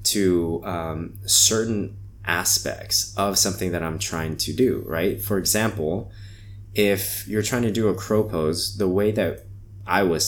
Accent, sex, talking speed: American, male, 160 wpm